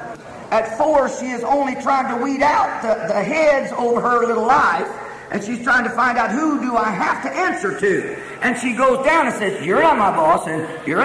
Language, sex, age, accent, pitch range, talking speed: English, male, 50-69, American, 210-280 Hz, 225 wpm